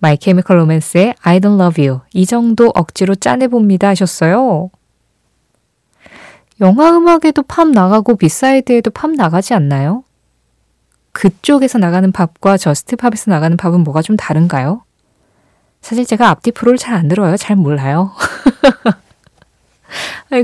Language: Korean